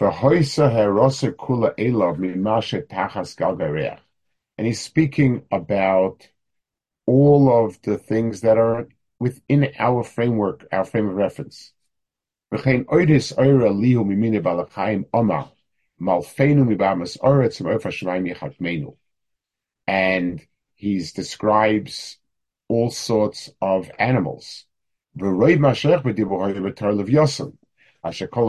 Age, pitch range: 50-69, 95-135 Hz